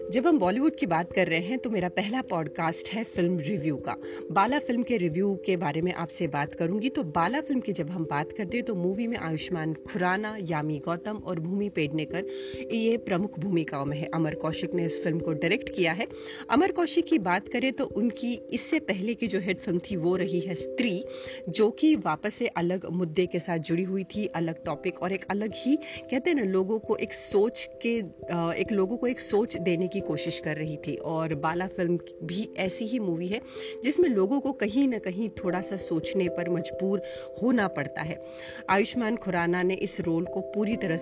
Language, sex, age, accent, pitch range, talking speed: Hindi, female, 30-49, native, 170-220 Hz, 205 wpm